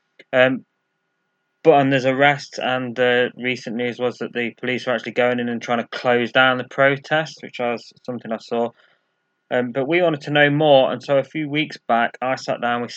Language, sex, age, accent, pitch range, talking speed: English, male, 20-39, British, 115-135 Hz, 210 wpm